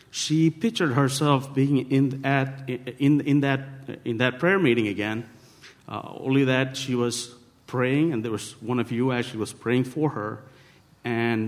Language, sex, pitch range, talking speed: English, male, 115-135 Hz, 165 wpm